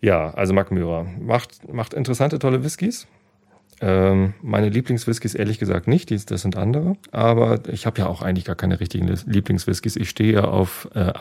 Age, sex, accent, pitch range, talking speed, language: 40-59, male, German, 90-110 Hz, 175 wpm, German